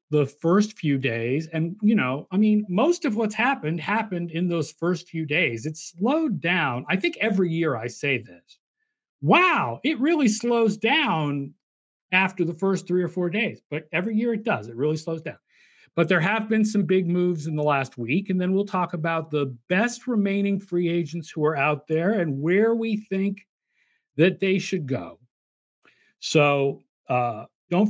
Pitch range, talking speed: 145-195 Hz, 185 wpm